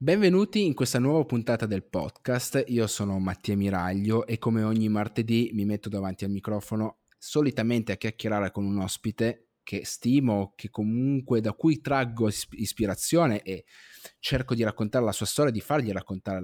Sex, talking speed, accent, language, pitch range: male, 160 wpm, native, Italian, 100-120 Hz